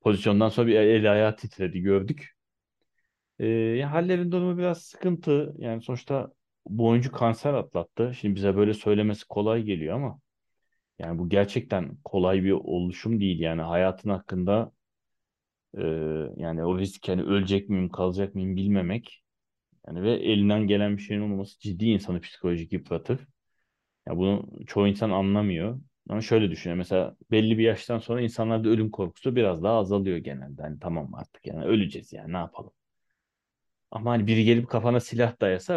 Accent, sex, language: native, male, Turkish